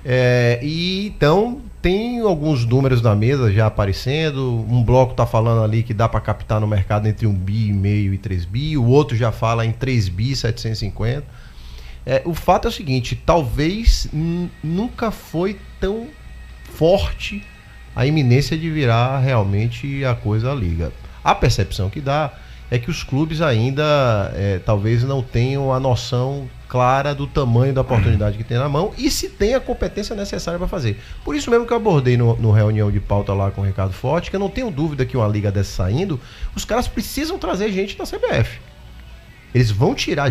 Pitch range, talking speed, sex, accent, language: 105-155 Hz, 185 wpm, male, Brazilian, Portuguese